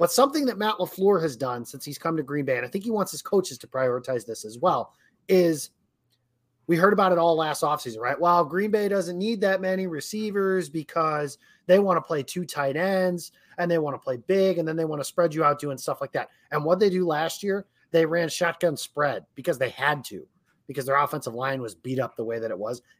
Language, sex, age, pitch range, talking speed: English, male, 30-49, 130-180 Hz, 245 wpm